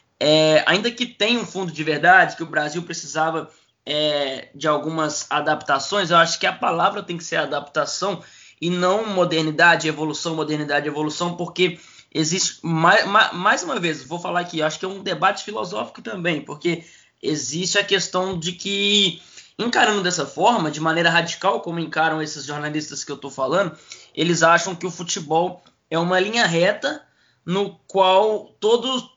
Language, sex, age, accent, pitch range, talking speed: Portuguese, male, 20-39, Brazilian, 160-200 Hz, 165 wpm